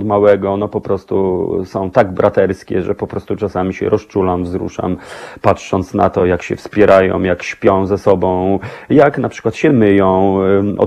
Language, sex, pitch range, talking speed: Polish, male, 100-115 Hz, 165 wpm